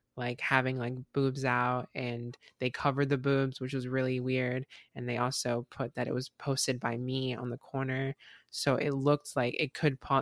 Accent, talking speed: American, 200 wpm